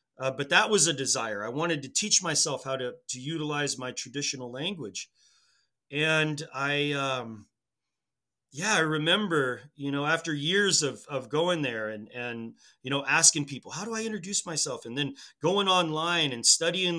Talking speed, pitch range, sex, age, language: 175 wpm, 125-150 Hz, male, 30-49, English